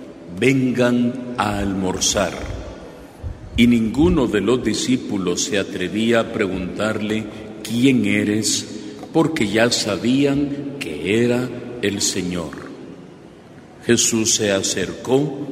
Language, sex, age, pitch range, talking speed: Spanish, male, 50-69, 105-125 Hz, 95 wpm